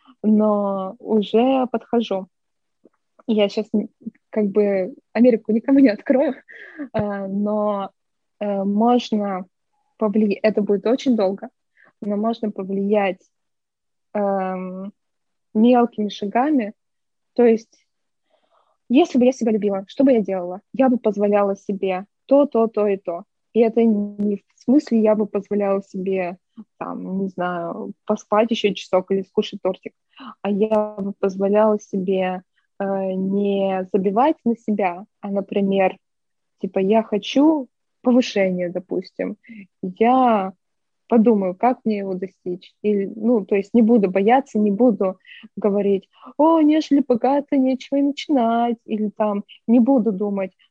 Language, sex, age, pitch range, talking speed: Russian, female, 20-39, 195-235 Hz, 125 wpm